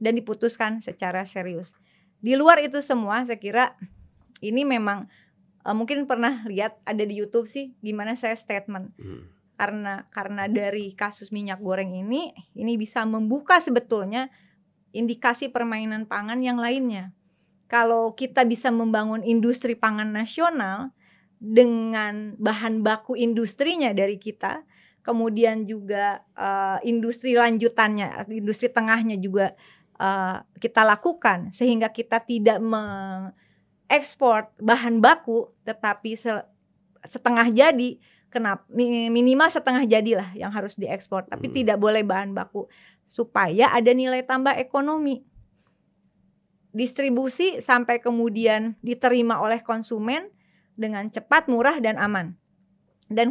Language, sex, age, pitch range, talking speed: Indonesian, female, 20-39, 205-245 Hz, 115 wpm